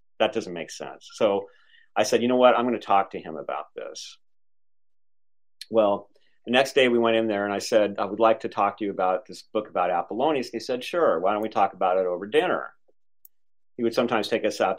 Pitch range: 100-120 Hz